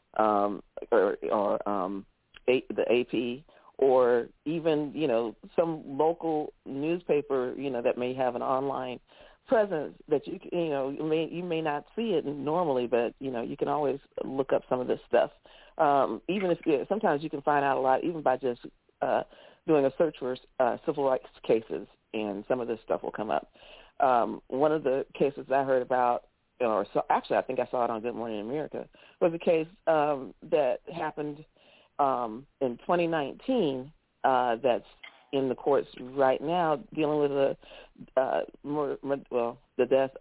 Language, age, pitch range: English, 40-59, 125-155 Hz